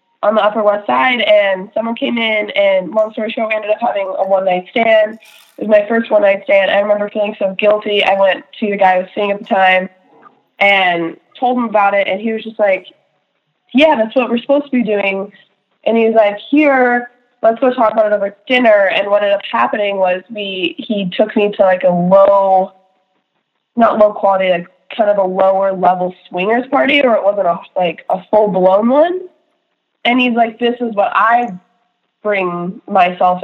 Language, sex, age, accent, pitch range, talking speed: English, female, 20-39, American, 185-230 Hz, 210 wpm